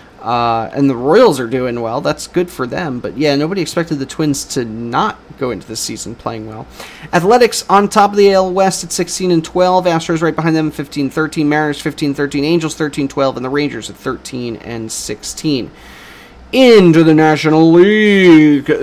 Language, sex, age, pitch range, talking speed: English, male, 30-49, 140-195 Hz, 180 wpm